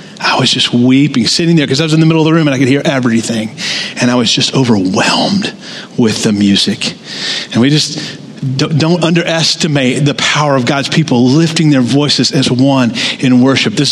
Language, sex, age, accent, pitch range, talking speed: English, male, 40-59, American, 140-185 Hz, 205 wpm